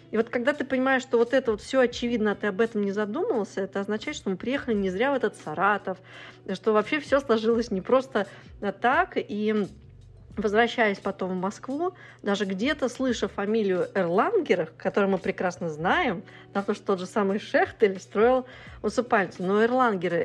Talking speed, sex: 170 wpm, female